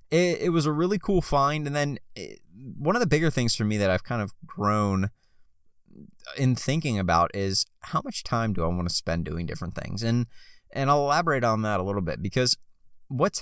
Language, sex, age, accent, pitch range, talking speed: English, male, 20-39, American, 90-130 Hz, 215 wpm